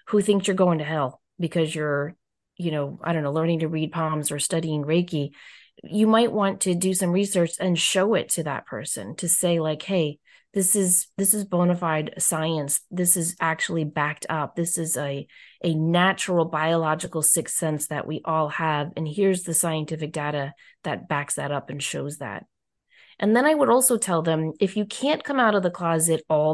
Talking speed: 200 wpm